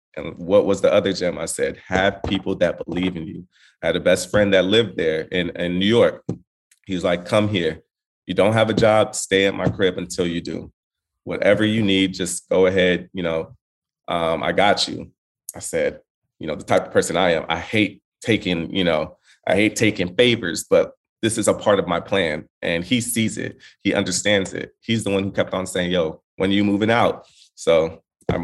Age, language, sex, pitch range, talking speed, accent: 30-49, English, male, 90-105 Hz, 220 wpm, American